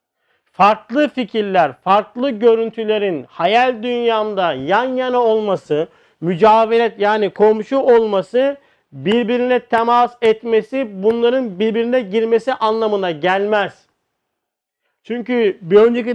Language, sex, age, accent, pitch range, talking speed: Turkish, male, 50-69, native, 210-245 Hz, 90 wpm